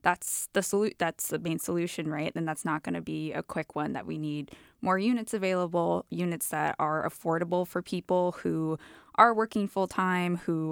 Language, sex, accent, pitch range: English, female, American, 160-210 Hz